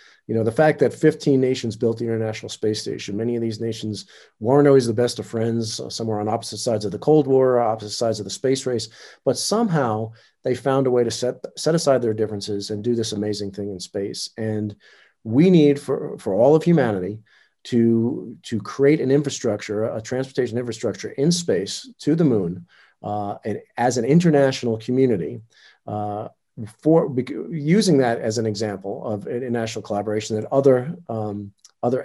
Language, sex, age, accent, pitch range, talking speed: English, male, 40-59, American, 110-140 Hz, 180 wpm